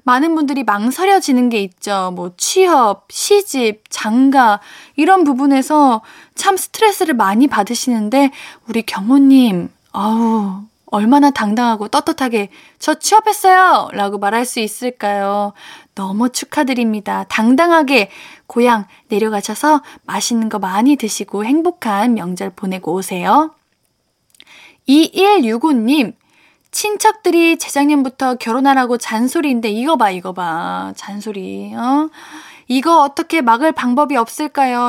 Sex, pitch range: female, 215-305 Hz